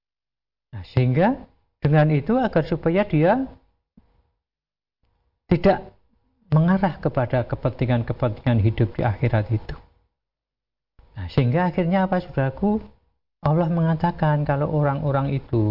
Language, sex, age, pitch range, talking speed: Indonesian, male, 50-69, 115-150 Hz, 95 wpm